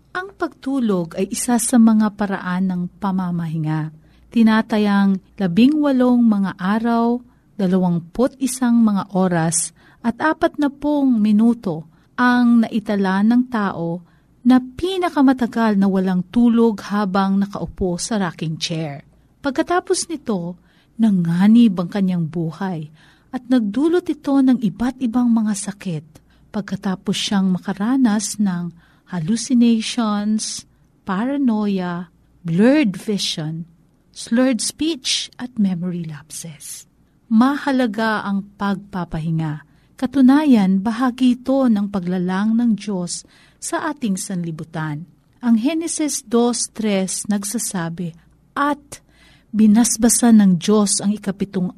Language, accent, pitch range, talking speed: Filipino, native, 180-245 Hz, 100 wpm